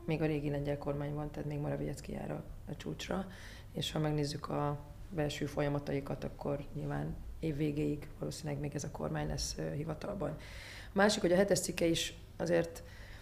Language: Hungarian